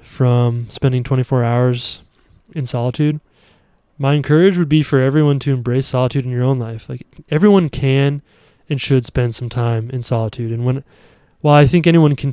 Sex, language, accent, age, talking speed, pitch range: male, English, American, 20-39, 175 wpm, 125-145 Hz